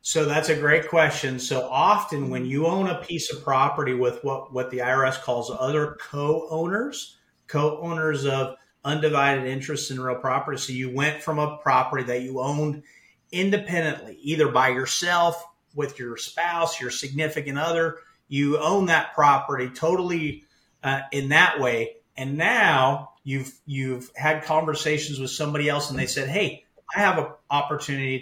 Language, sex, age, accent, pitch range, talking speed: English, male, 40-59, American, 130-160 Hz, 160 wpm